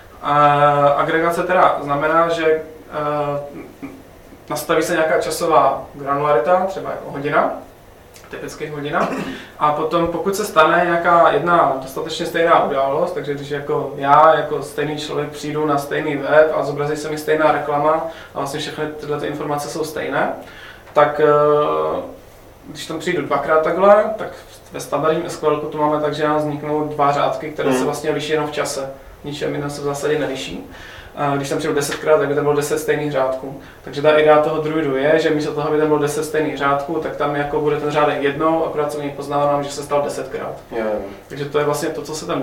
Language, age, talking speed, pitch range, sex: Czech, 20-39, 190 wpm, 145-160 Hz, male